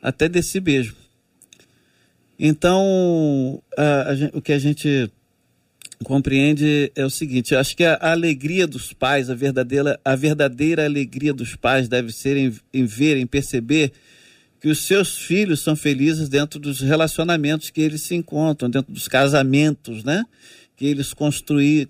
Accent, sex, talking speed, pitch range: Brazilian, male, 155 wpm, 140-175 Hz